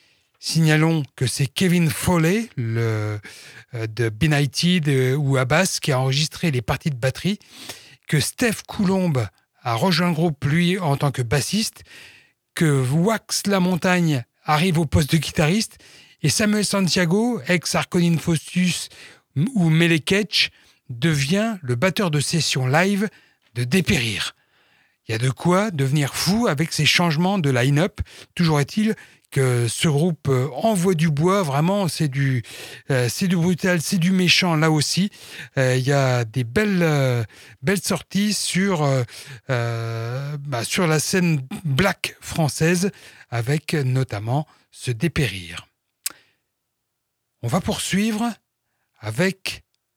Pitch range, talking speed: 130-180 Hz, 135 wpm